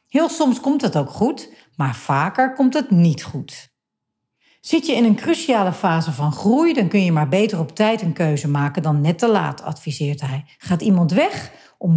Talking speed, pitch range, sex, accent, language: 200 wpm, 160-225 Hz, female, Dutch, Dutch